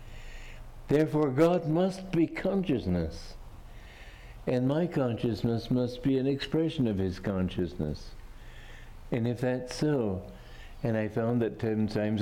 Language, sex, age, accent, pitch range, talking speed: English, male, 60-79, American, 105-140 Hz, 125 wpm